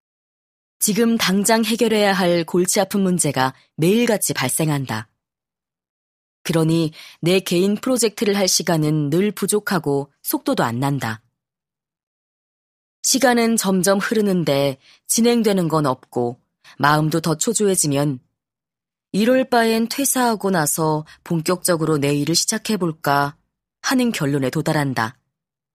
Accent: native